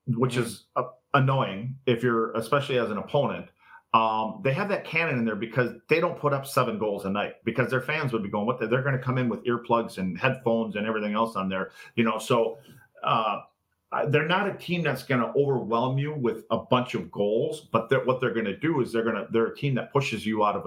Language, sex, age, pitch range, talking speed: English, male, 40-59, 115-135 Hz, 240 wpm